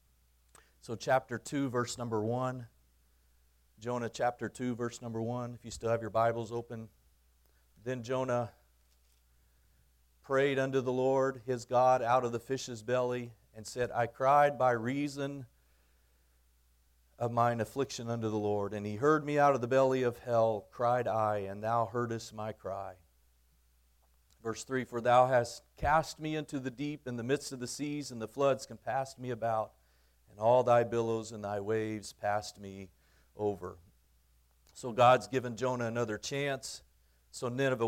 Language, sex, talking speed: English, male, 160 wpm